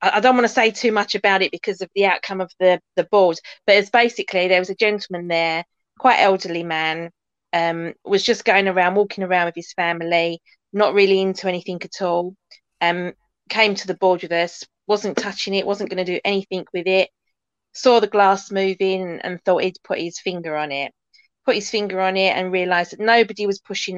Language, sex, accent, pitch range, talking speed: English, female, British, 175-205 Hz, 210 wpm